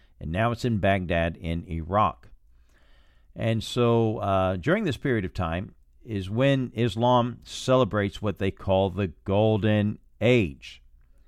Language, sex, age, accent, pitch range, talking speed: English, male, 50-69, American, 70-110 Hz, 135 wpm